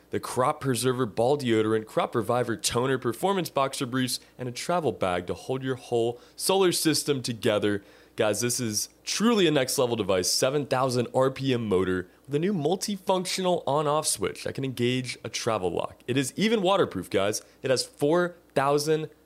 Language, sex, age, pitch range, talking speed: English, male, 20-39, 115-165 Hz, 160 wpm